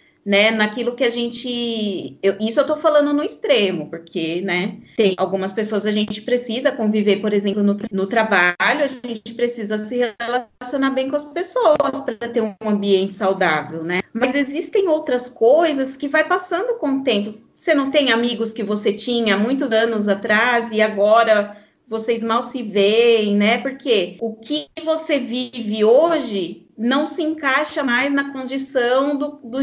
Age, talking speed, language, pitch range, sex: 30-49, 165 wpm, Portuguese, 210-270 Hz, female